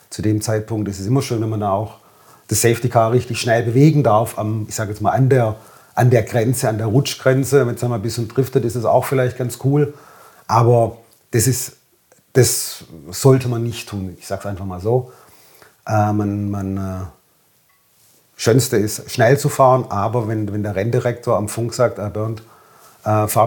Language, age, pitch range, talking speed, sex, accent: German, 40-59, 105-125 Hz, 200 wpm, male, German